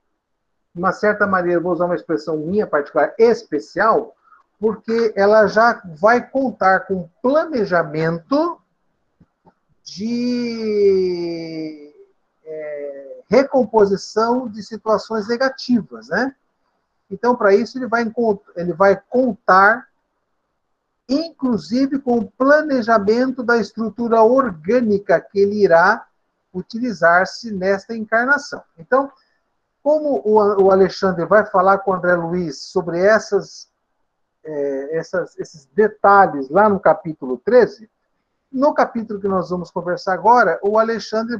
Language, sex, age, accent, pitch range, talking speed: Portuguese, male, 60-79, Brazilian, 180-235 Hz, 105 wpm